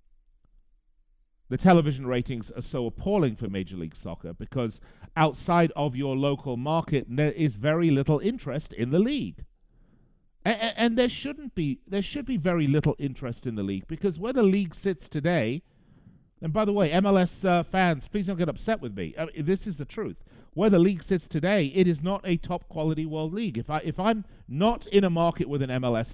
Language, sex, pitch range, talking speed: English, male, 115-175 Hz, 200 wpm